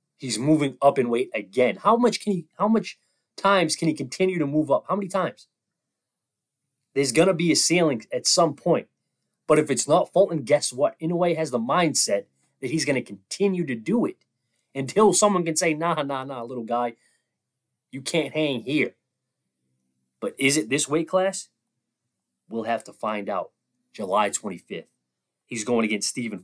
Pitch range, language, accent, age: 115-160 Hz, English, American, 30-49